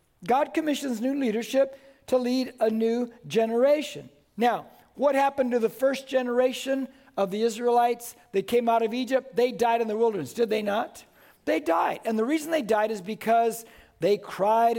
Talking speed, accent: 175 wpm, American